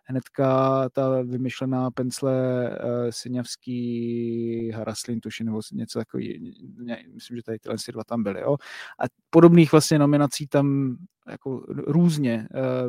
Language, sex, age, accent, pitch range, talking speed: Czech, male, 20-39, native, 120-140 Hz, 130 wpm